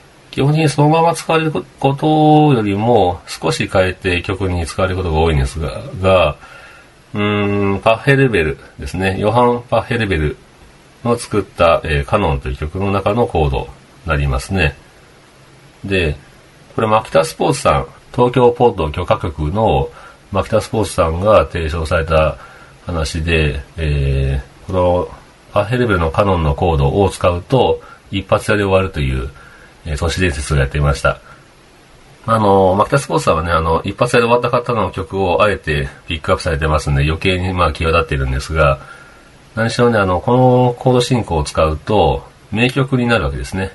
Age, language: 40-59, Japanese